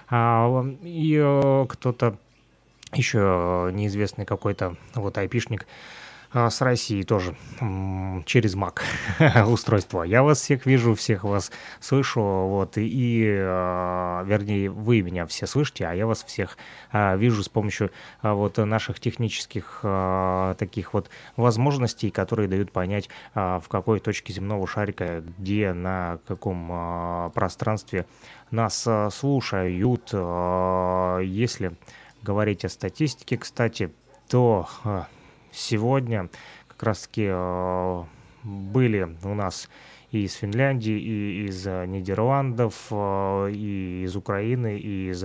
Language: Russian